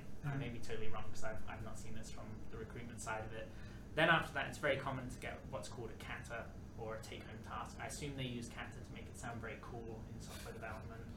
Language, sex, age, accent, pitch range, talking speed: English, male, 20-39, British, 110-125 Hz, 250 wpm